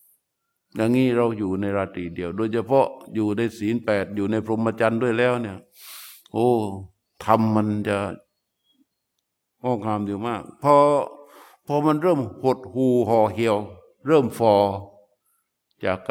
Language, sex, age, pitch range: Thai, male, 60-79, 110-145 Hz